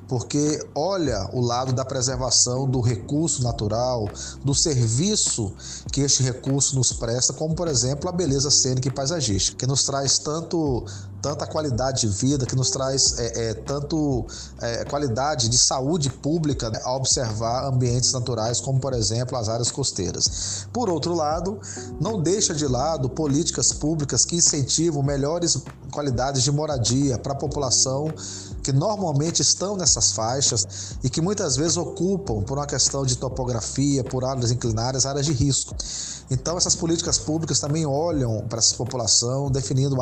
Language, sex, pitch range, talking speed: Portuguese, male, 120-150 Hz, 155 wpm